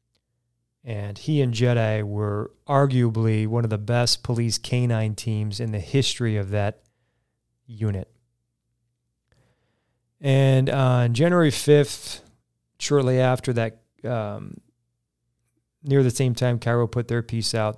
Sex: male